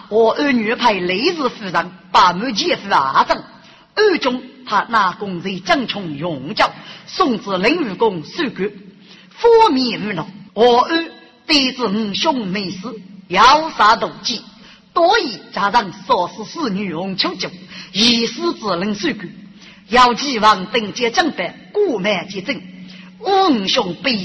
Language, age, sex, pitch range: Chinese, 40-59, female, 190-260 Hz